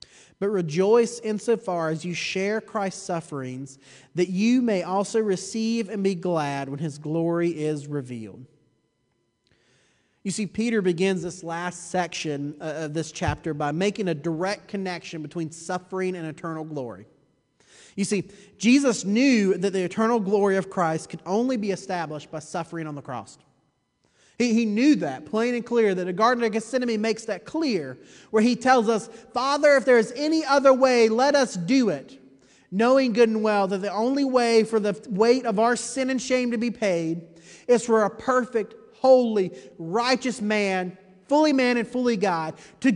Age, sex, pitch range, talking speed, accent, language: 30-49, male, 170-235 Hz, 170 wpm, American, English